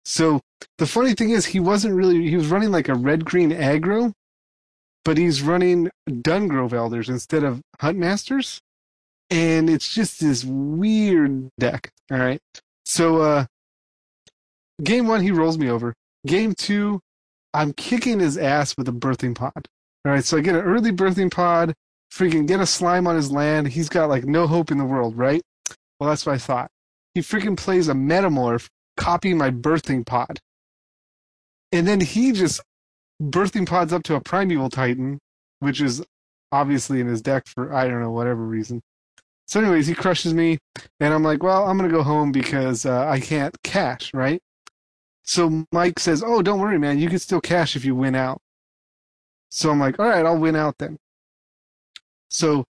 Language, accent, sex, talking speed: English, American, male, 175 wpm